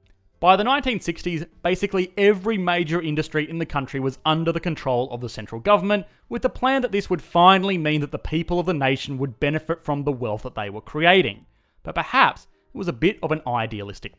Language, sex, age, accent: English, male, 30-49, Australian